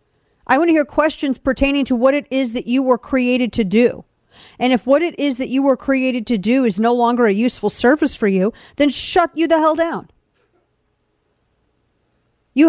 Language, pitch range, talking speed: English, 215-275 Hz, 200 wpm